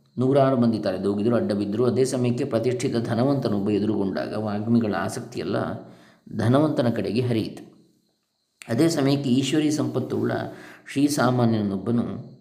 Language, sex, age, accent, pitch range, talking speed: Kannada, male, 20-39, native, 115-140 Hz, 100 wpm